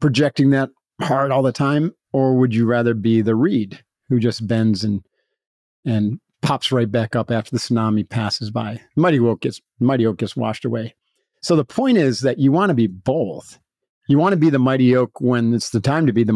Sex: male